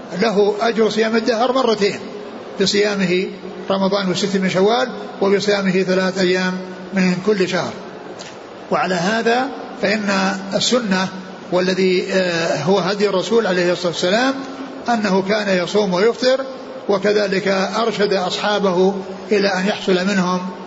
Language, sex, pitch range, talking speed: Arabic, male, 180-205 Hz, 110 wpm